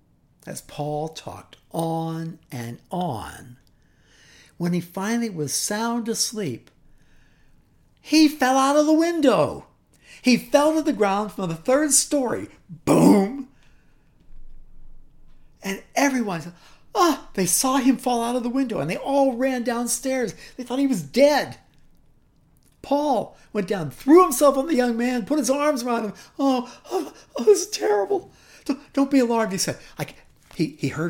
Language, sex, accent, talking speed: English, male, American, 155 wpm